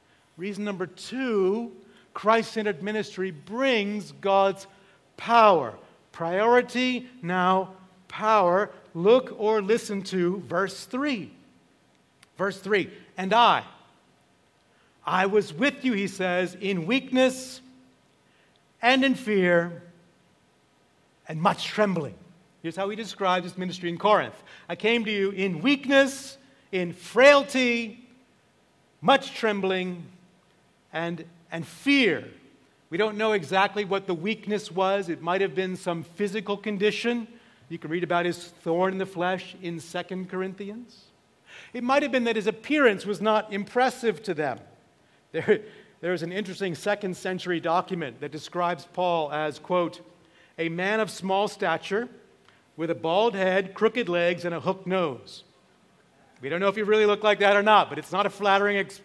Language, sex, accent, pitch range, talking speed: English, male, American, 180-220 Hz, 140 wpm